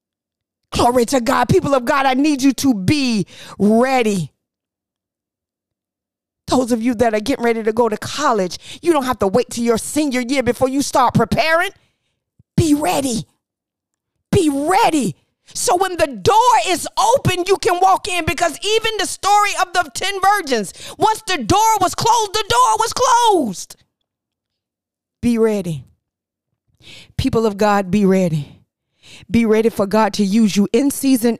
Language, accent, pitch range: English, American, 220-310 Hz